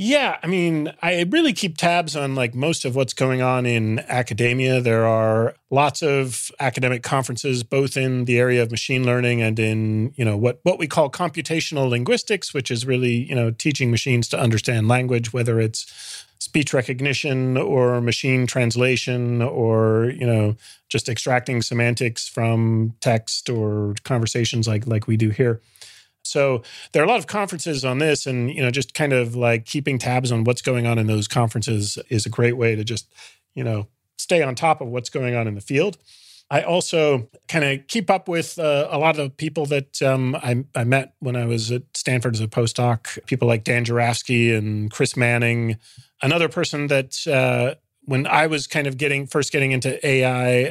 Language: English